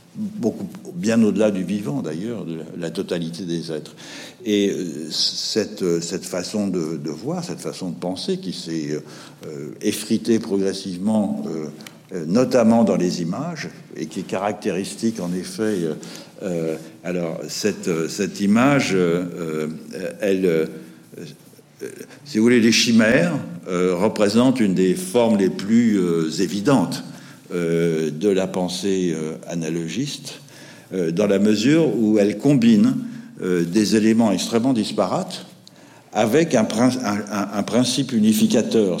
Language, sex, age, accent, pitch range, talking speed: French, male, 60-79, French, 85-125 Hz, 110 wpm